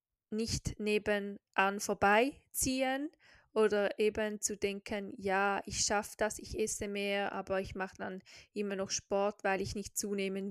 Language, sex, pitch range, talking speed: German, female, 195-225 Hz, 145 wpm